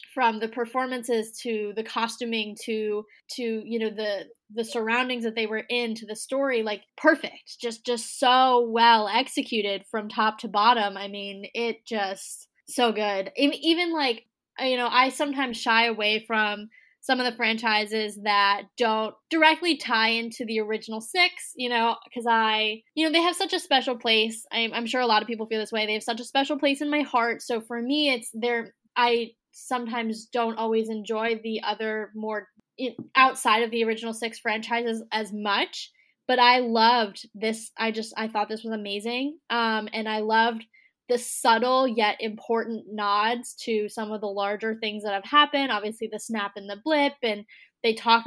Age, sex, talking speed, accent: 10-29, female, 185 wpm, American